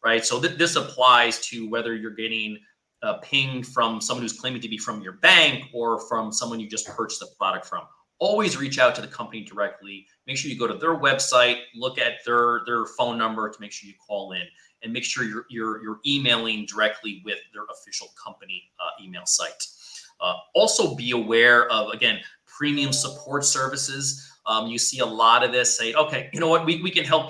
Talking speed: 205 wpm